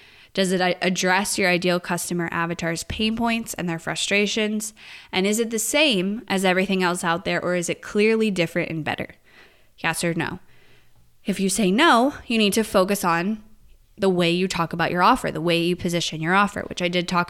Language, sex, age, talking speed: English, female, 20-39, 200 wpm